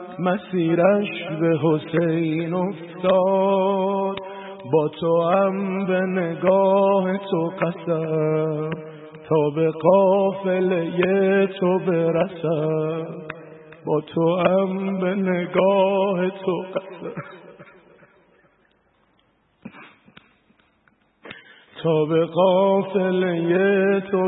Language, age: Persian, 50-69